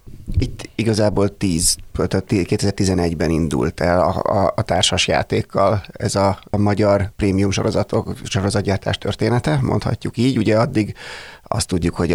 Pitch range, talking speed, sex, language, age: 95-110 Hz, 125 wpm, male, Hungarian, 30-49